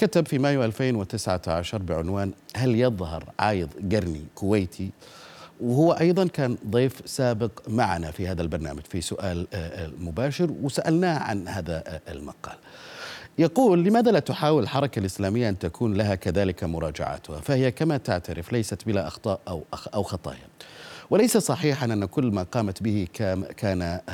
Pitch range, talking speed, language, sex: 90-130 Hz, 135 wpm, Arabic, male